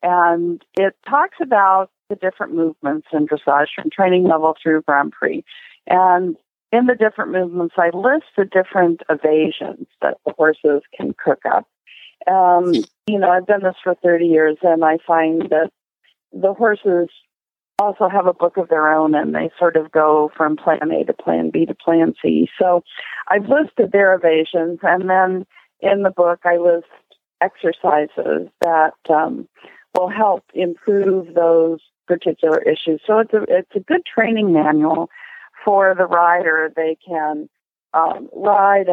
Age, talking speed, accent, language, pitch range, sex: 50-69, 155 wpm, American, English, 160-190 Hz, female